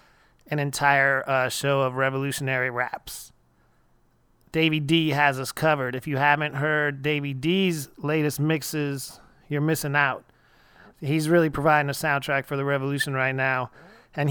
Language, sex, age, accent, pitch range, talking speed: English, male, 30-49, American, 140-165 Hz, 145 wpm